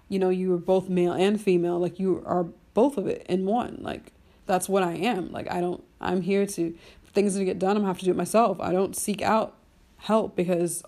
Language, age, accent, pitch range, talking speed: English, 30-49, American, 180-200 Hz, 245 wpm